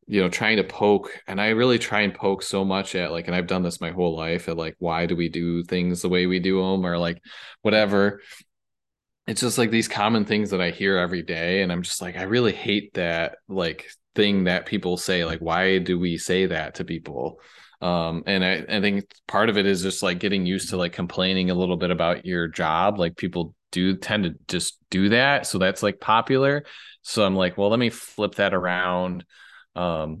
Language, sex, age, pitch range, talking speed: English, male, 20-39, 90-100 Hz, 225 wpm